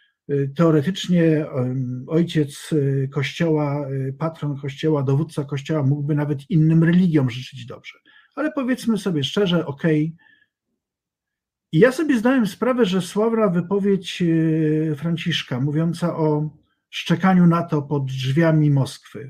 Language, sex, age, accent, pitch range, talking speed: Polish, male, 50-69, native, 140-190 Hz, 105 wpm